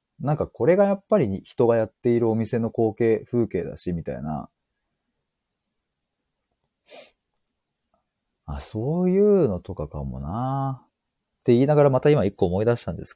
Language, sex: Japanese, male